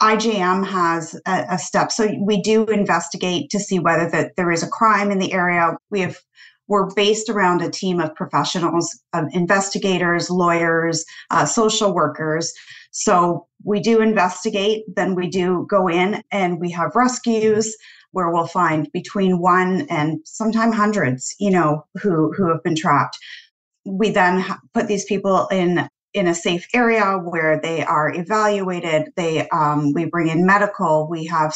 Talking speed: 165 wpm